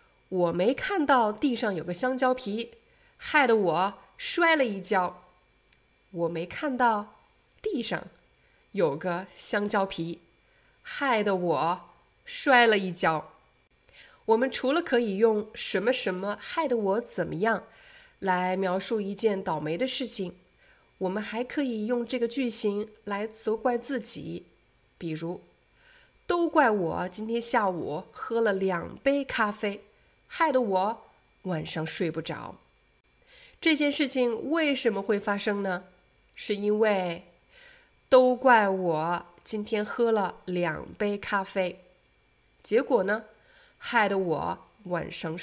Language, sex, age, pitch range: Chinese, female, 20-39, 185-260 Hz